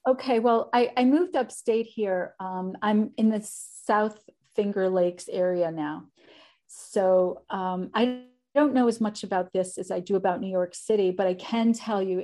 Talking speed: 180 wpm